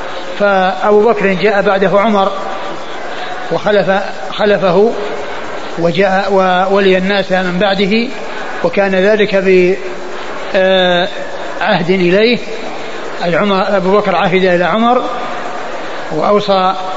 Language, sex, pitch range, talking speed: Arabic, male, 185-205 Hz, 80 wpm